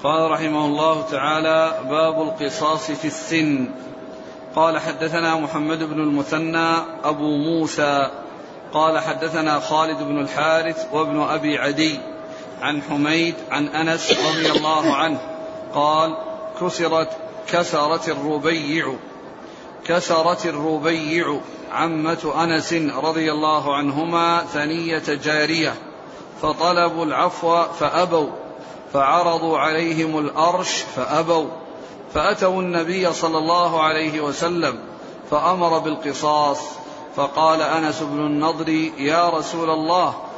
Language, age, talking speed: Arabic, 40-59, 95 wpm